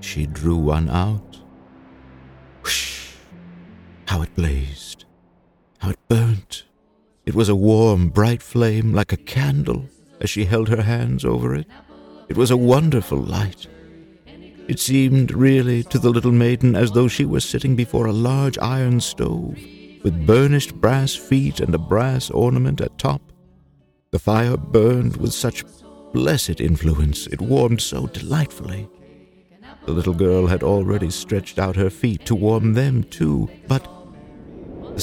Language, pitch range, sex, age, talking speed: English, 80-120 Hz, male, 60-79, 145 wpm